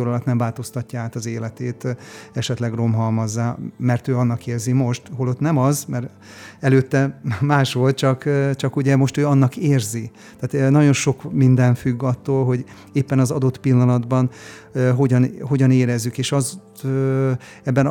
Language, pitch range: Hungarian, 120-135 Hz